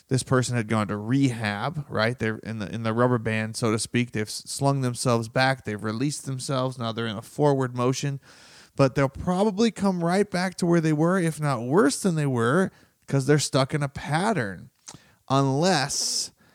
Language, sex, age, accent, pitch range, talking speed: English, male, 30-49, American, 125-170 Hz, 190 wpm